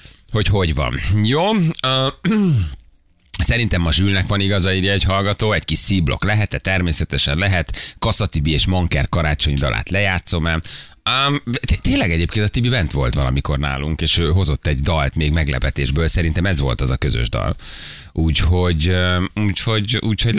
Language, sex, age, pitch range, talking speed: Hungarian, male, 30-49, 75-105 Hz, 140 wpm